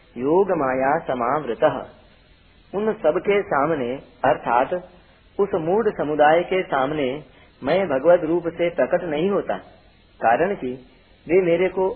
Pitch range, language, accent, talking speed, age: 125-175 Hz, Hindi, native, 120 wpm, 40-59